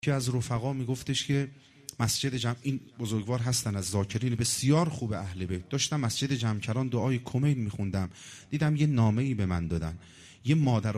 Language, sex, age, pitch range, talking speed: Persian, male, 40-59, 105-140 Hz, 175 wpm